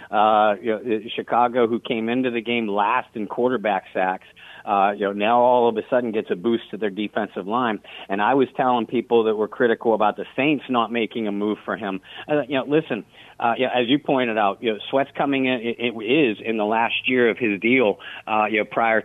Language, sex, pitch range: English, male, 110-135 Hz